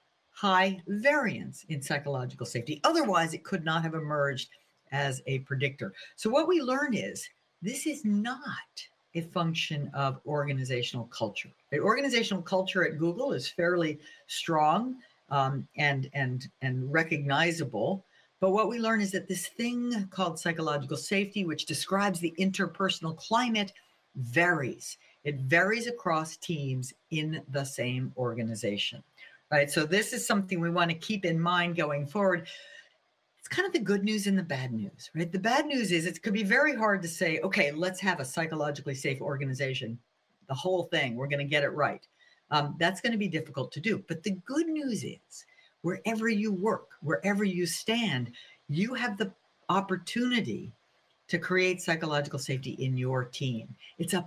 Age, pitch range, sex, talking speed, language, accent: 60-79, 145-200 Hz, female, 165 wpm, Dutch, American